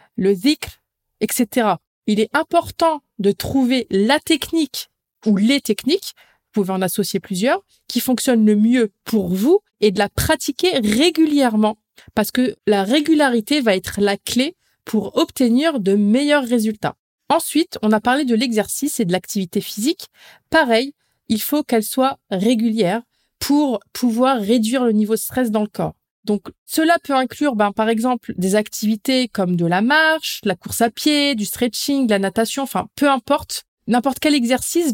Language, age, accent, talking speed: French, 20-39, French, 165 wpm